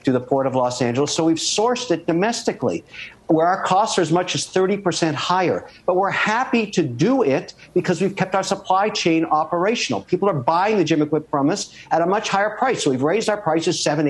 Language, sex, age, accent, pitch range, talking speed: English, male, 60-79, American, 150-190 Hz, 225 wpm